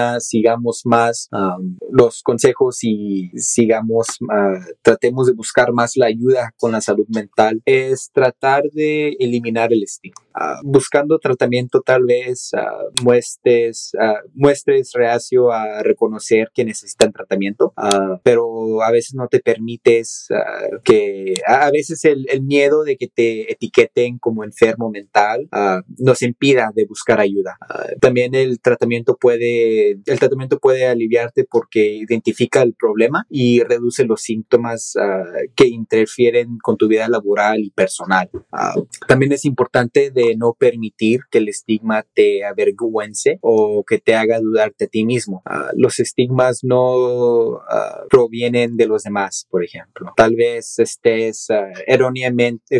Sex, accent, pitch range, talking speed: male, Mexican, 110-130 Hz, 145 wpm